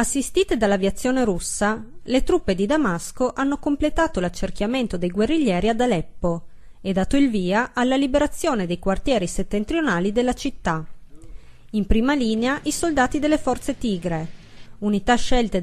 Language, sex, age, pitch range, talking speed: Italian, female, 30-49, 190-255 Hz, 135 wpm